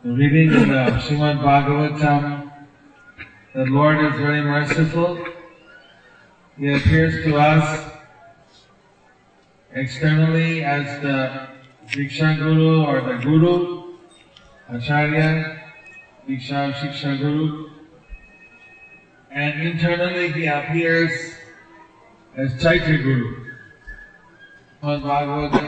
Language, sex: English, male